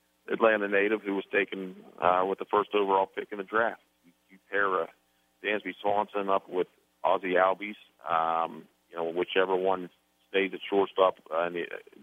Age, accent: 40-59, American